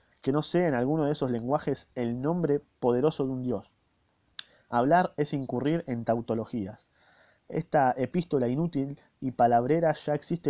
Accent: Argentinian